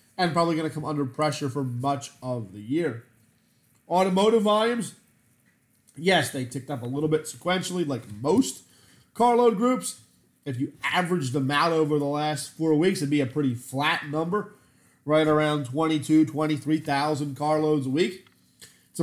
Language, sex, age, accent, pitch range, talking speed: English, male, 30-49, American, 140-170 Hz, 160 wpm